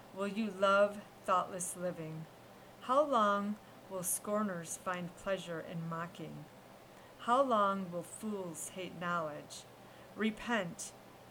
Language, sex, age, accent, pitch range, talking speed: English, female, 40-59, American, 170-200 Hz, 105 wpm